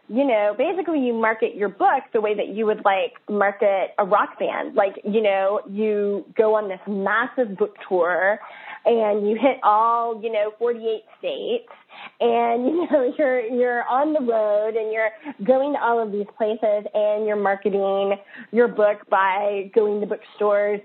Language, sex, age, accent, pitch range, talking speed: English, female, 20-39, American, 200-245 Hz, 175 wpm